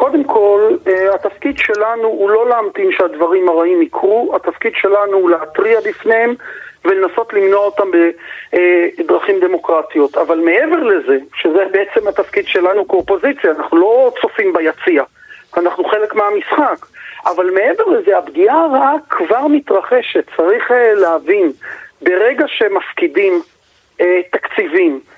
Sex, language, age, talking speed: male, Hebrew, 50-69, 110 wpm